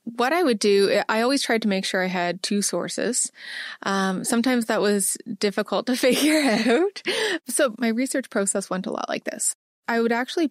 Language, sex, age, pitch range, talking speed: English, female, 20-39, 195-245 Hz, 195 wpm